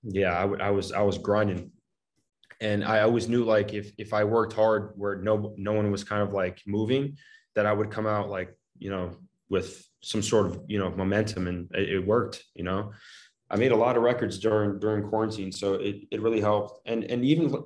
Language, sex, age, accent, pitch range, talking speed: English, male, 20-39, American, 100-115 Hz, 220 wpm